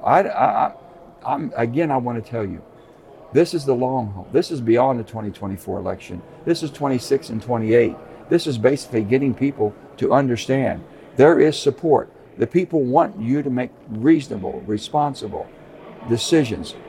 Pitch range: 105-130 Hz